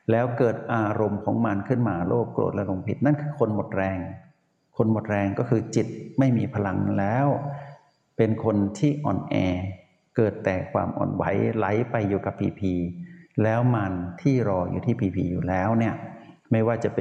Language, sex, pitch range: Thai, male, 100-135 Hz